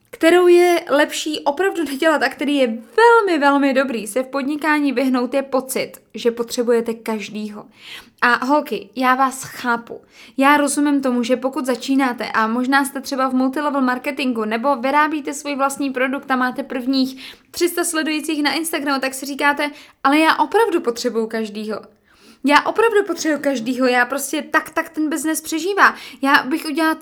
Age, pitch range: 20-39, 240-290 Hz